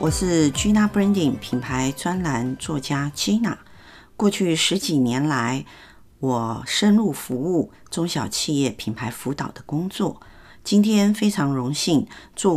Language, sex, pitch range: Chinese, female, 130-180 Hz